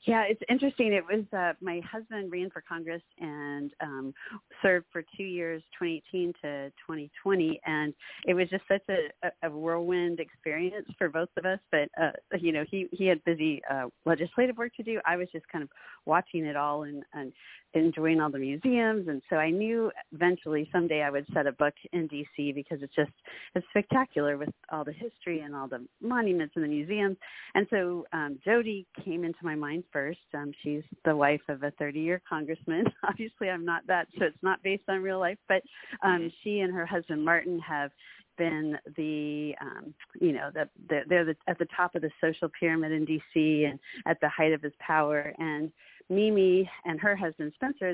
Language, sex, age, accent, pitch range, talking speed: English, female, 40-59, American, 150-185 Hz, 195 wpm